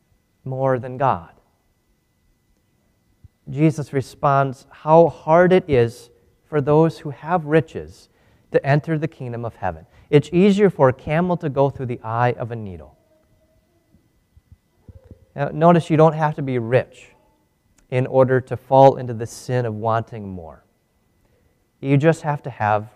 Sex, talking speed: male, 145 wpm